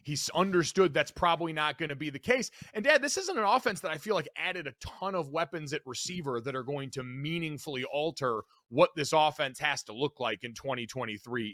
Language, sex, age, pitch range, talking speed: English, male, 30-49, 140-175 Hz, 220 wpm